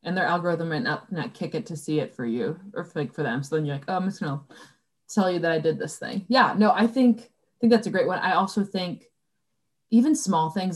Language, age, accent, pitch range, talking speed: English, 20-39, American, 170-235 Hz, 275 wpm